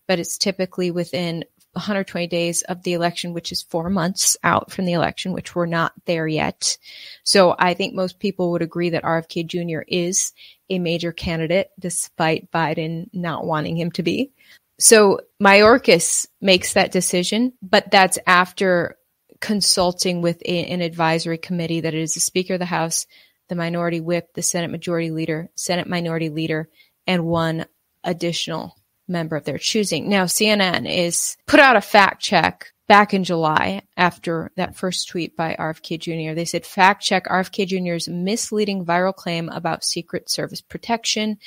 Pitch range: 175-210 Hz